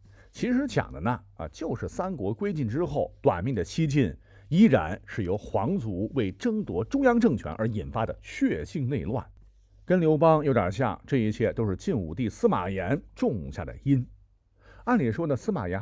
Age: 50-69